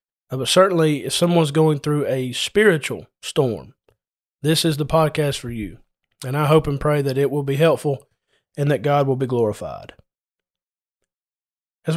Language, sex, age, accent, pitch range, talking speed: English, male, 30-49, American, 140-165 Hz, 160 wpm